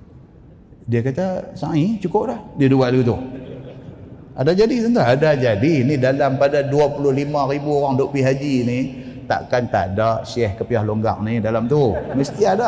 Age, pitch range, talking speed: 30-49, 130-205 Hz, 165 wpm